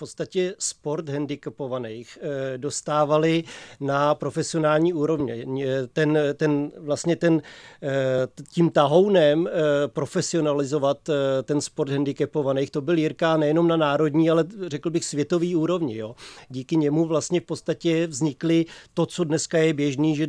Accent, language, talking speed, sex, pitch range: native, Czech, 125 wpm, male, 140-155 Hz